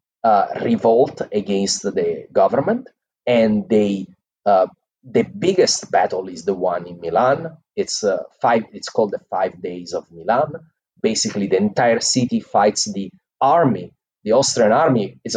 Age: 30-49